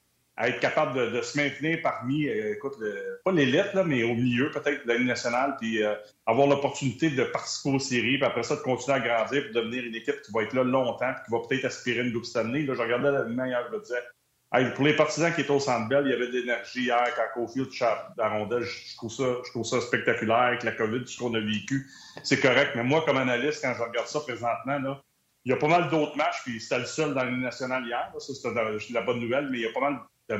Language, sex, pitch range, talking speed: French, male, 115-140 Hz, 265 wpm